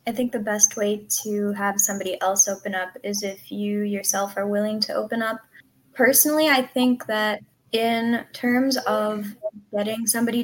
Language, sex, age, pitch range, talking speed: English, female, 10-29, 205-235 Hz, 165 wpm